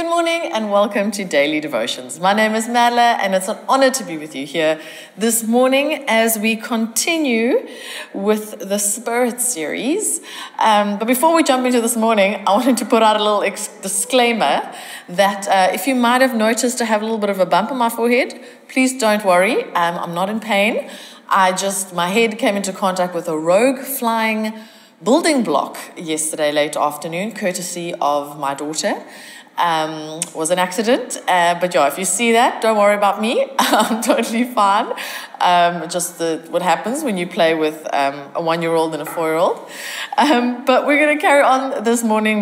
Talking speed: 185 wpm